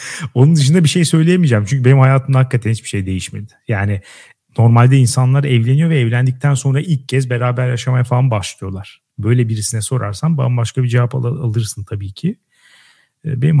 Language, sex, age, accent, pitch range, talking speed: Turkish, male, 40-59, native, 115-140 Hz, 155 wpm